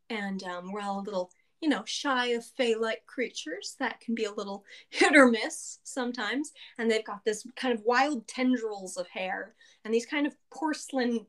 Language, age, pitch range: English, 20-39, 220-305 Hz